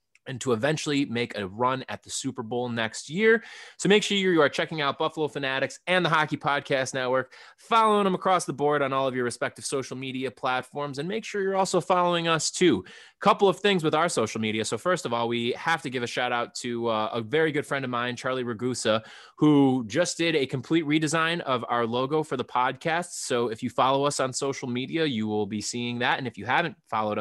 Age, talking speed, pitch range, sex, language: 20-39, 230 wpm, 120-155 Hz, male, English